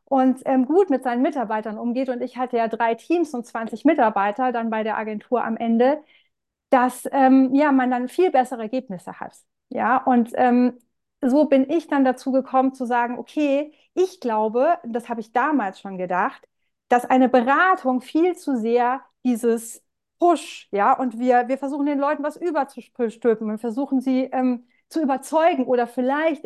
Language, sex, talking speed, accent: German, female, 170 wpm, German